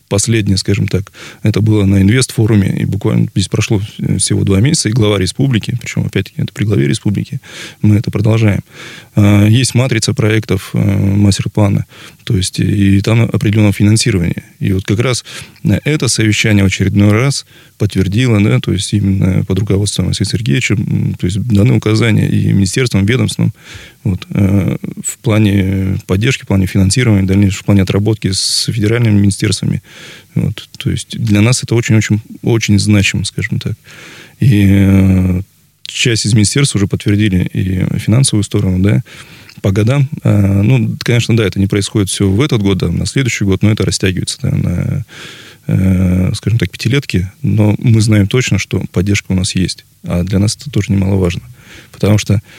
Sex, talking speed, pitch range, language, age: male, 155 wpm, 100-115 Hz, Russian, 20-39